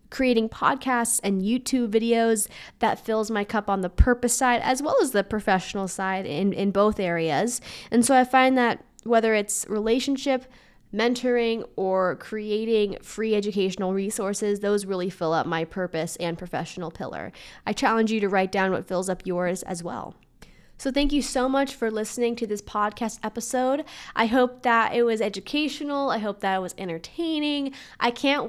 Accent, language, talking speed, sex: American, English, 175 wpm, female